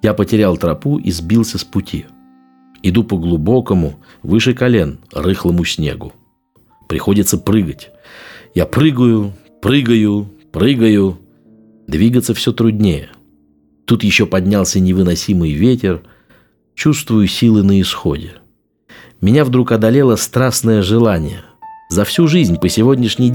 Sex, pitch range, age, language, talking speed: male, 90-115 Hz, 50-69, Russian, 110 wpm